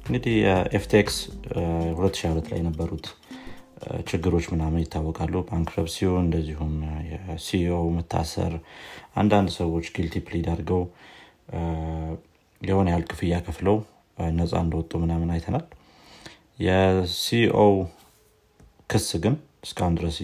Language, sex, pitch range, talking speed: Amharic, male, 85-100 Hz, 90 wpm